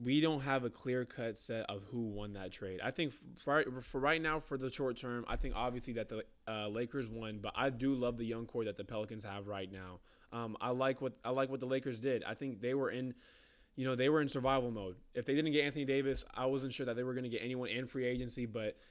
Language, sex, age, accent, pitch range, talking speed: English, male, 20-39, American, 120-135 Hz, 270 wpm